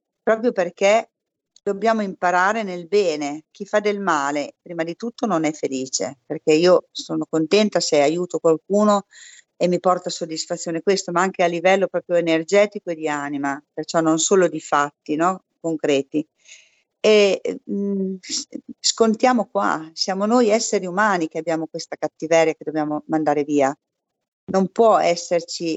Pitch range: 160-195 Hz